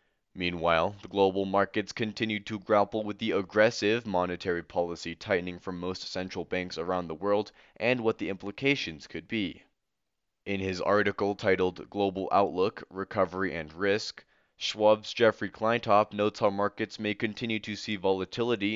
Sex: male